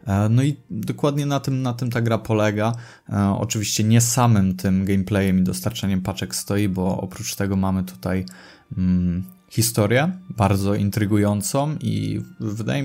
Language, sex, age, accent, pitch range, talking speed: Polish, male, 20-39, native, 95-110 Hz, 135 wpm